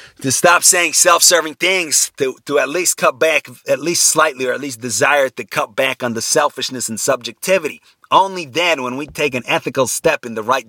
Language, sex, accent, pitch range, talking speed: English, male, American, 115-145 Hz, 210 wpm